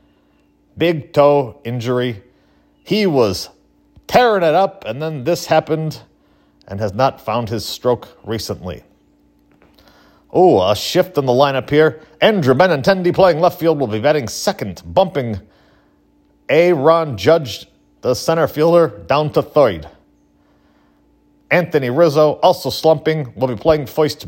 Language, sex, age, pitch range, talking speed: English, male, 40-59, 105-160 Hz, 130 wpm